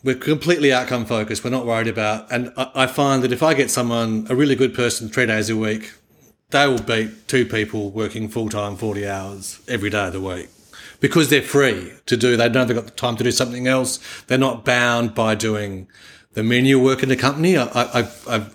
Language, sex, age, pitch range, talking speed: English, male, 40-59, 110-125 Hz, 215 wpm